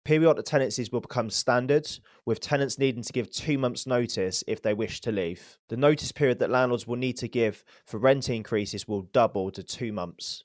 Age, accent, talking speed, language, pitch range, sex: 20-39, British, 200 wpm, English, 105-130 Hz, male